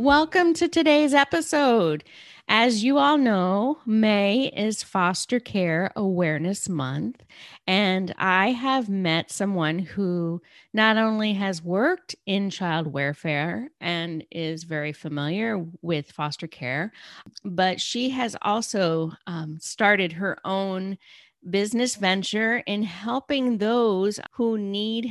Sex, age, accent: female, 40-59, American